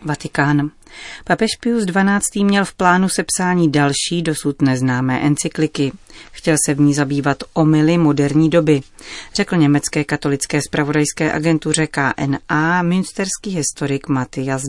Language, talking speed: Czech, 120 wpm